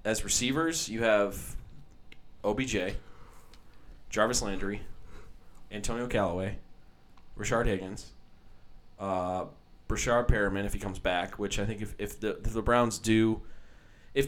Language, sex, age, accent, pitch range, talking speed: English, male, 20-39, American, 95-115 Hz, 120 wpm